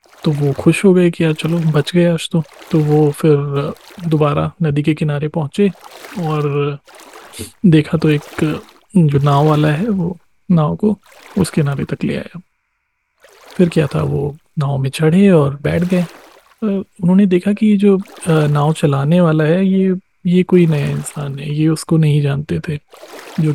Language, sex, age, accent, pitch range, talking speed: Hindi, male, 30-49, native, 150-175 Hz, 165 wpm